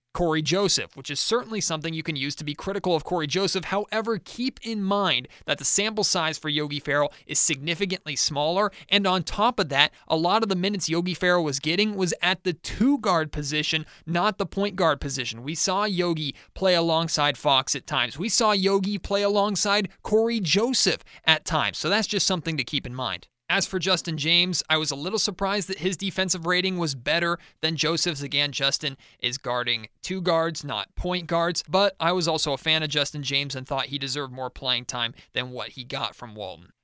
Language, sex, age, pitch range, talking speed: English, male, 30-49, 145-185 Hz, 205 wpm